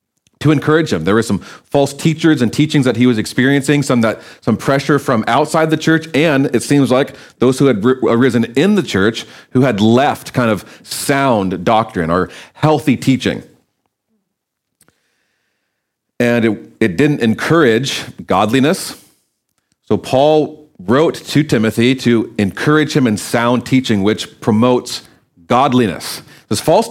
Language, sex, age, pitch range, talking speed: English, male, 40-59, 120-150 Hz, 145 wpm